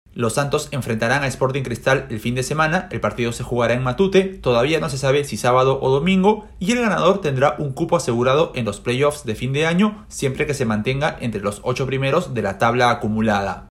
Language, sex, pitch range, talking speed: Spanish, male, 120-185 Hz, 220 wpm